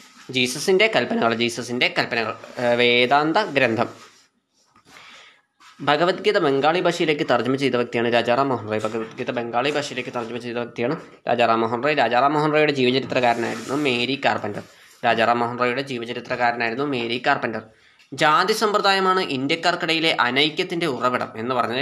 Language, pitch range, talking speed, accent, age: Malayalam, 120-150 Hz, 110 wpm, native, 20-39